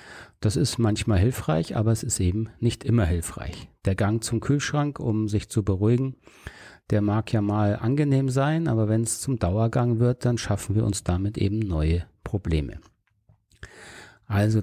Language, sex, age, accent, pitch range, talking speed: German, male, 40-59, German, 100-130 Hz, 165 wpm